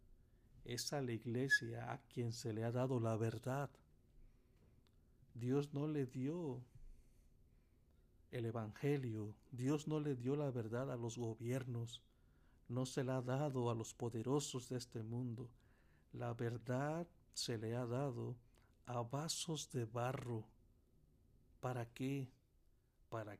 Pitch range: 115-130 Hz